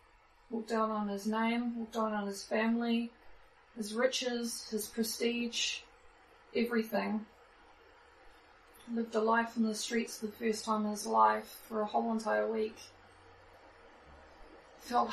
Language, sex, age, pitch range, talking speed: English, female, 20-39, 210-230 Hz, 135 wpm